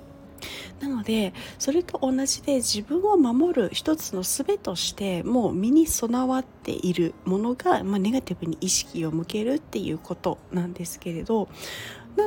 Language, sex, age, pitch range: Japanese, female, 40-59, 175-275 Hz